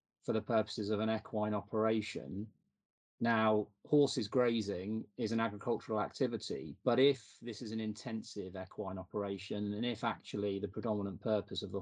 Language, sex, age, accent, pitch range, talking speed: English, male, 30-49, British, 100-115 Hz, 150 wpm